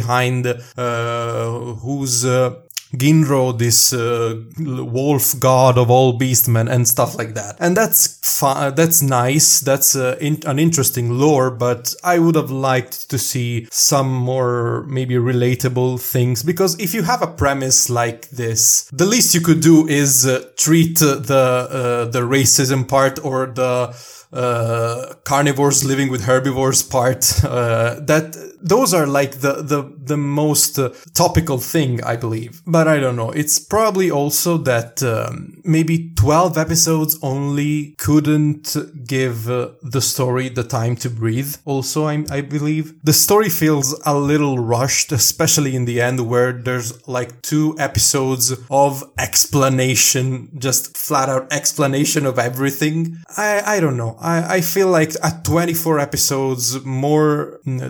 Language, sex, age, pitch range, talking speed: English, male, 20-39, 125-150 Hz, 150 wpm